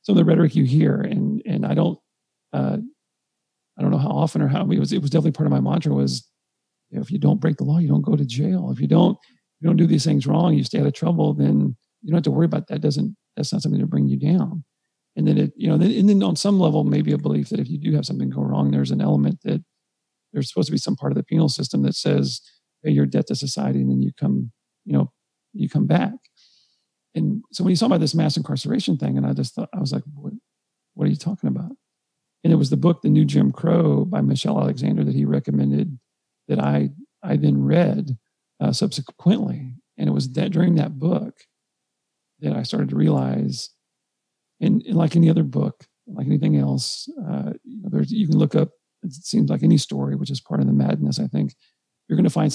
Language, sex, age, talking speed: English, male, 40-59, 245 wpm